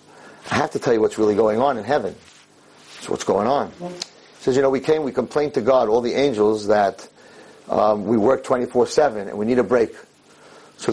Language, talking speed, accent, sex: English, 215 wpm, American, male